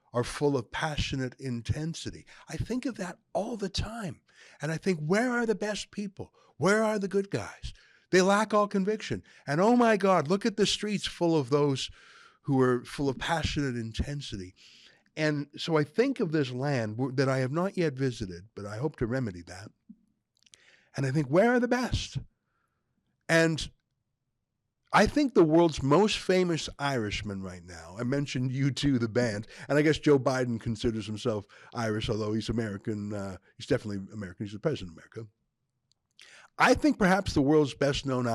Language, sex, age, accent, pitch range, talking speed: English, male, 60-79, American, 115-170 Hz, 180 wpm